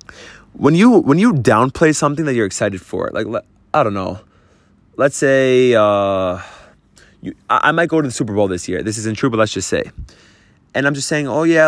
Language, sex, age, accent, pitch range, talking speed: English, male, 20-39, American, 110-175 Hz, 205 wpm